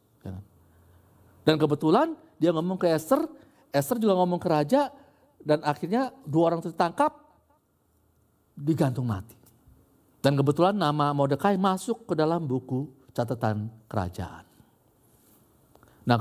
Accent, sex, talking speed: native, male, 105 wpm